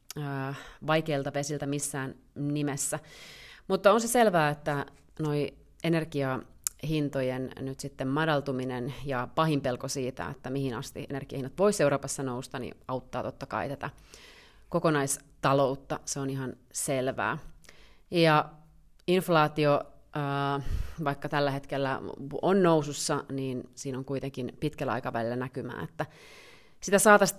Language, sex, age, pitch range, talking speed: Finnish, female, 30-49, 140-160 Hz, 115 wpm